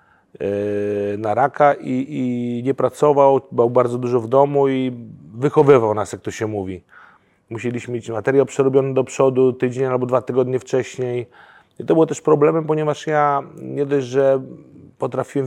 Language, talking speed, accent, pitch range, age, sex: Polish, 150 wpm, native, 115-140 Hz, 30-49, male